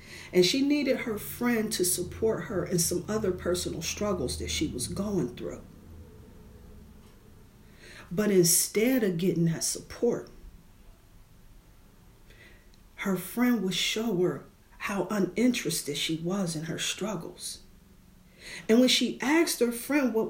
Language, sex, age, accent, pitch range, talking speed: English, female, 40-59, American, 165-230 Hz, 125 wpm